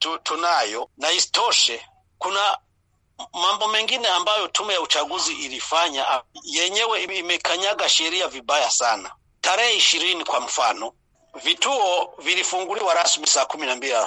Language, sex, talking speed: Swahili, male, 100 wpm